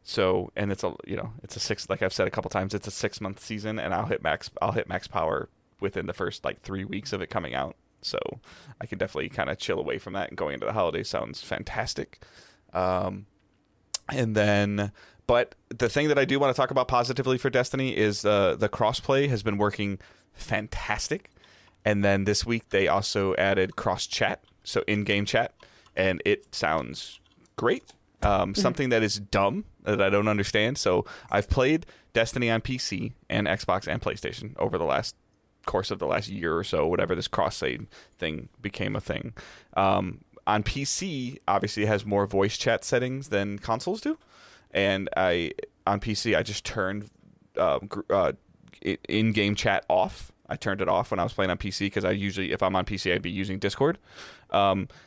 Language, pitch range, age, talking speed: English, 100-120 Hz, 30-49, 195 wpm